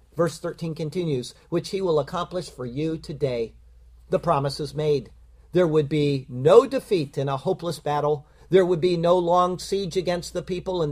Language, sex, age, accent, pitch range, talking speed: English, male, 50-69, American, 145-190 Hz, 180 wpm